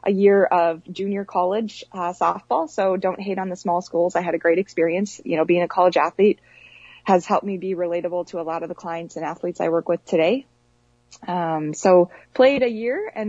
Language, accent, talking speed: English, American, 215 wpm